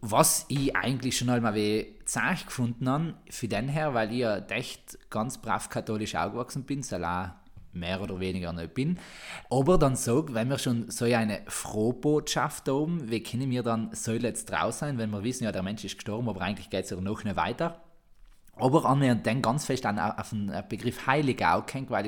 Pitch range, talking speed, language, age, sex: 100-135 Hz, 200 wpm, German, 20-39, male